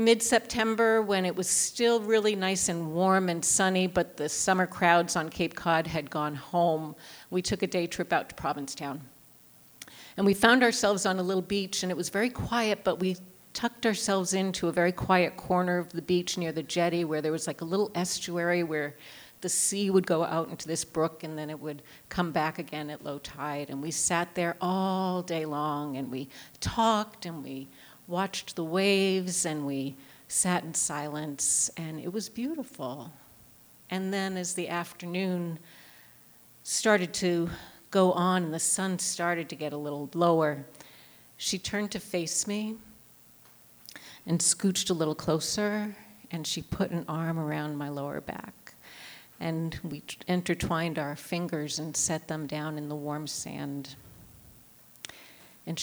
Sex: female